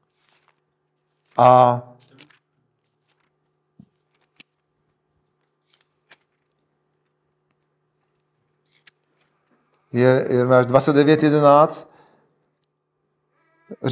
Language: Czech